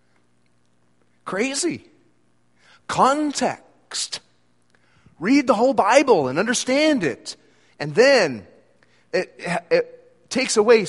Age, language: 40-59, English